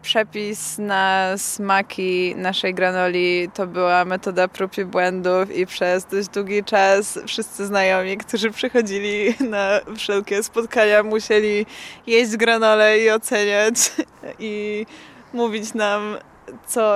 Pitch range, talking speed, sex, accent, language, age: 190-220 Hz, 110 wpm, female, native, Polish, 20-39